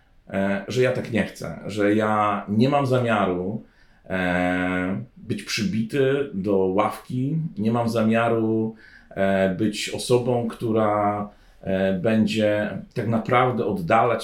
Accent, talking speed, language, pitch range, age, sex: native, 100 wpm, Polish, 100-120 Hz, 40-59, male